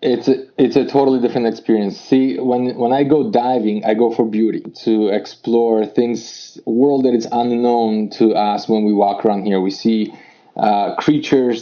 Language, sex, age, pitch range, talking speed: English, male, 20-39, 110-135 Hz, 185 wpm